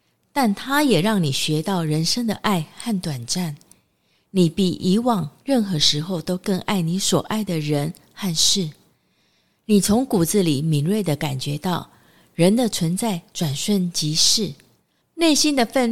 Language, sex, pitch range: Chinese, female, 170-230 Hz